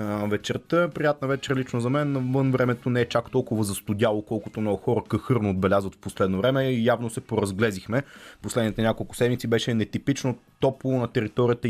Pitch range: 105-130 Hz